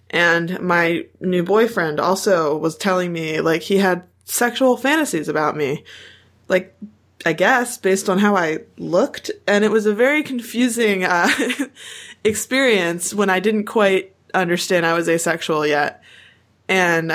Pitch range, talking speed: 170-215 Hz, 145 wpm